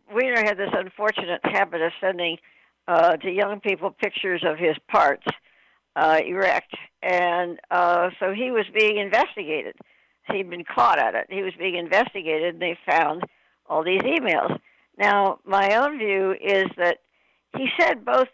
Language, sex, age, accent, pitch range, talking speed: English, female, 60-79, American, 180-215 Hz, 155 wpm